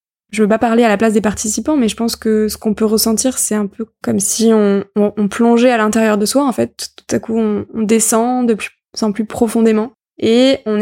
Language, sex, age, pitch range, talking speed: French, female, 20-39, 210-235 Hz, 250 wpm